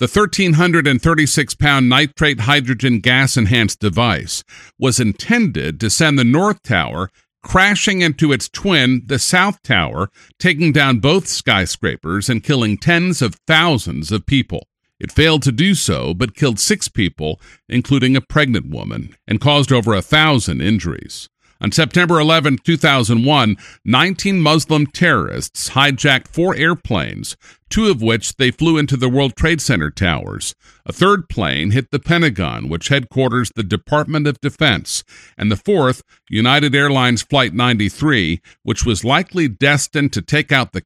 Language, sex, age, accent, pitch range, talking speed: English, male, 50-69, American, 110-160 Hz, 145 wpm